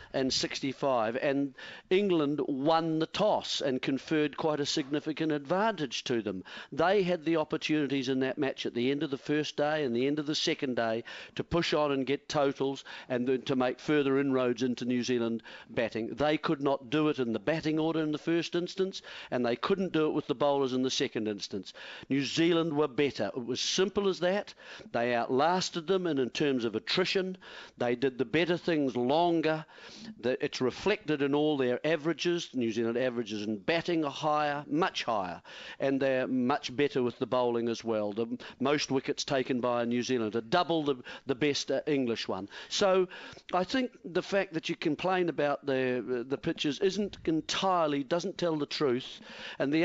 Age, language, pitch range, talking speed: 50-69, English, 130-175 Hz, 195 wpm